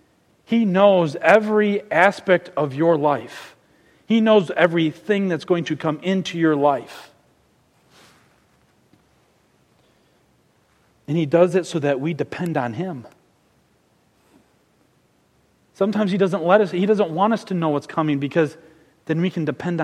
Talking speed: 135 wpm